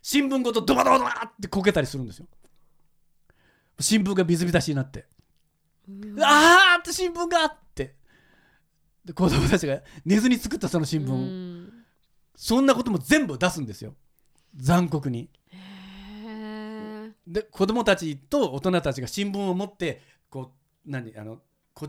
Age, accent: 40-59, native